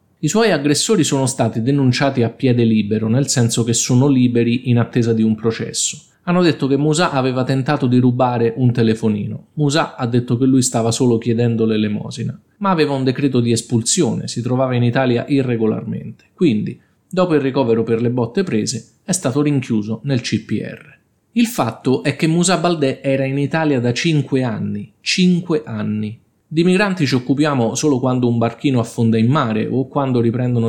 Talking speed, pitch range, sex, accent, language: 175 wpm, 115-140 Hz, male, native, Italian